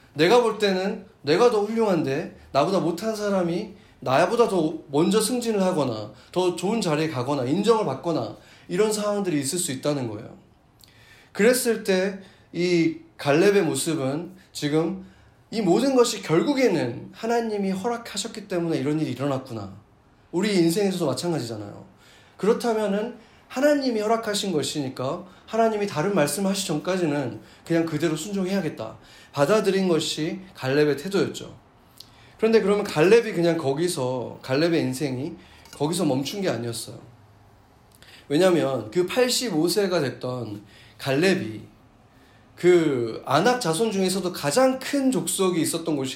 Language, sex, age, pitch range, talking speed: English, male, 30-49, 140-210 Hz, 110 wpm